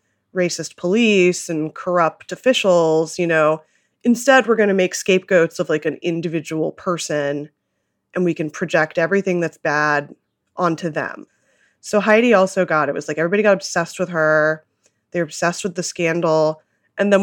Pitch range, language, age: 155-185 Hz, English, 20-39